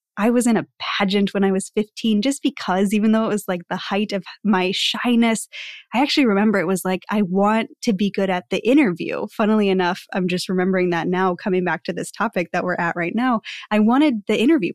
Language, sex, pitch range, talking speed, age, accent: English, female, 185-230 Hz, 230 wpm, 10-29, American